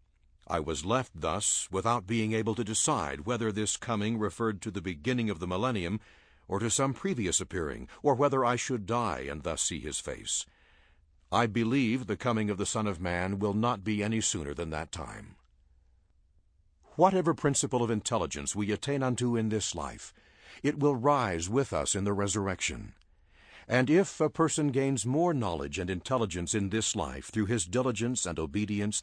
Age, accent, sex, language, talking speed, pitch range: 60-79, American, male, English, 180 wpm, 90-130 Hz